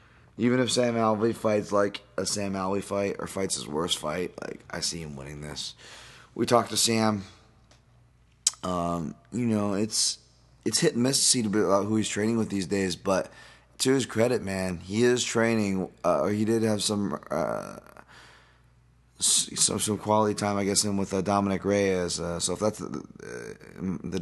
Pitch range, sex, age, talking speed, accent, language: 85-105 Hz, male, 20-39, 180 wpm, American, English